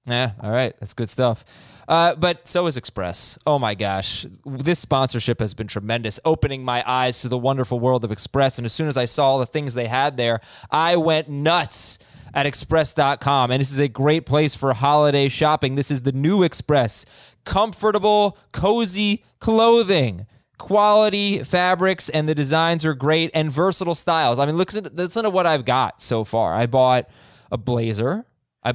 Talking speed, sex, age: 180 wpm, male, 20-39